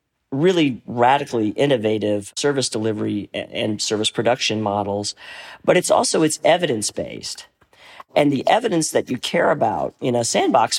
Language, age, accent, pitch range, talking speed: English, 40-59, American, 110-140 Hz, 140 wpm